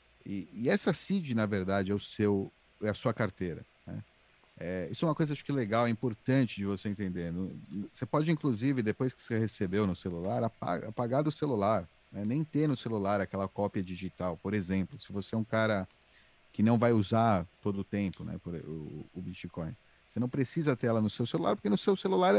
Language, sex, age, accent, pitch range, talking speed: Portuguese, male, 40-59, Brazilian, 95-125 Hz, 215 wpm